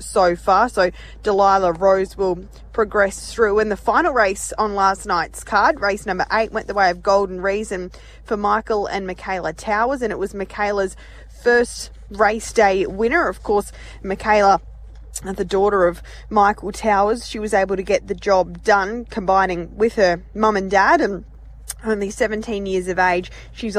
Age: 20-39